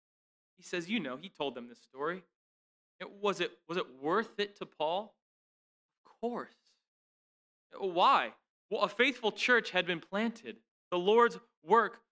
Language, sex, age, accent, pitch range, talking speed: English, male, 20-39, American, 170-235 Hz, 145 wpm